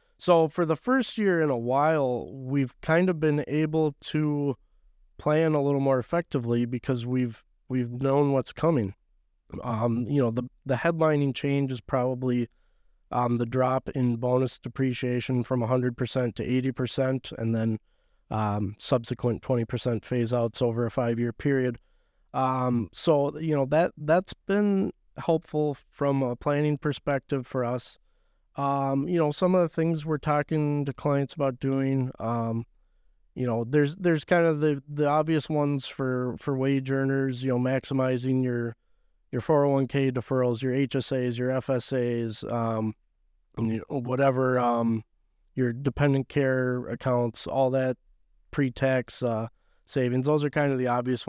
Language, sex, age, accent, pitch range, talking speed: English, male, 20-39, American, 120-145 Hz, 150 wpm